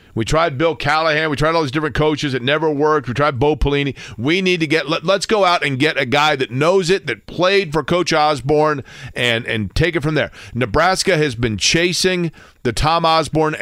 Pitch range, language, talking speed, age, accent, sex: 120-160 Hz, English, 225 wpm, 40-59, American, male